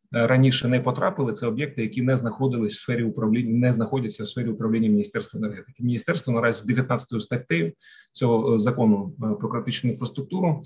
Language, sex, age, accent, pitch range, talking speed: Ukrainian, male, 30-49, native, 115-145 Hz, 160 wpm